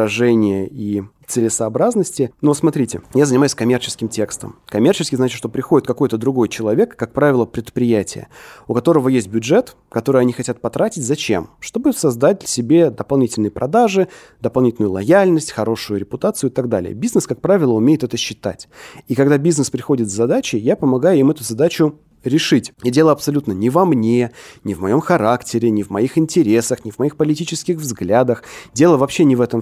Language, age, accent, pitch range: Russian, 30-49, native, 110-140 Hz